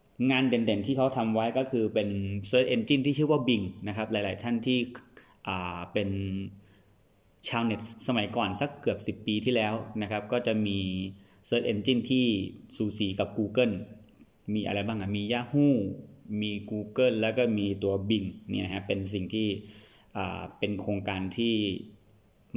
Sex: male